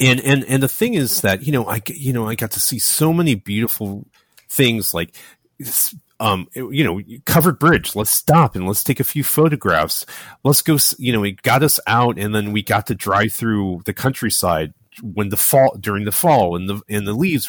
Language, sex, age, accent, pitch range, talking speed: English, male, 30-49, American, 105-155 Hz, 215 wpm